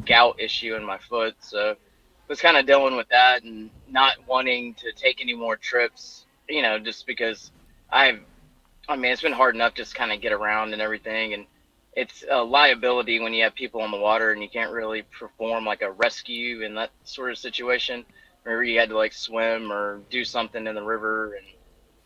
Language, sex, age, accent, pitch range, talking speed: English, male, 20-39, American, 110-125 Hz, 205 wpm